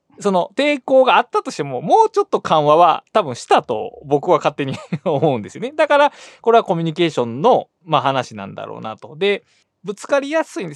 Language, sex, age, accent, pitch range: Japanese, male, 20-39, native, 150-245 Hz